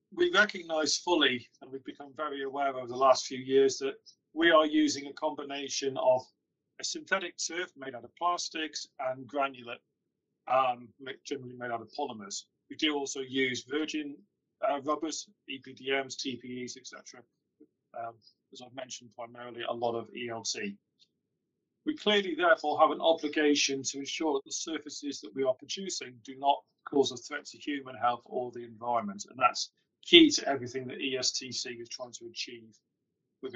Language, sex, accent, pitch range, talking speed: English, male, British, 125-155 Hz, 165 wpm